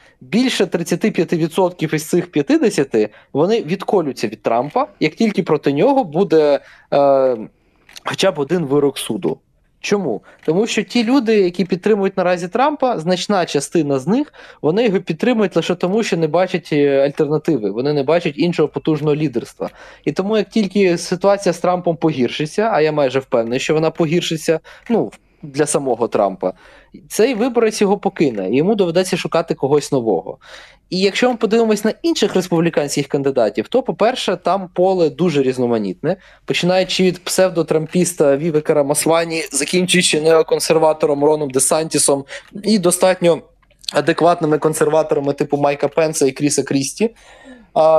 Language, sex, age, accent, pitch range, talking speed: Ukrainian, male, 20-39, native, 150-195 Hz, 140 wpm